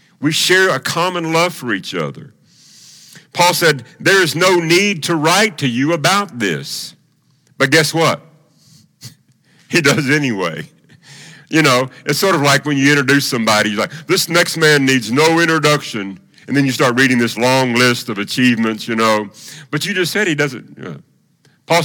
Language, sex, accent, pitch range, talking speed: English, male, American, 115-160 Hz, 175 wpm